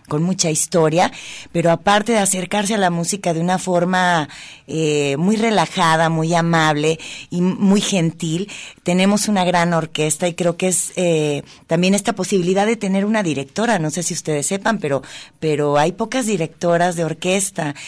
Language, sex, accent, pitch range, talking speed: Spanish, female, Mexican, 150-185 Hz, 165 wpm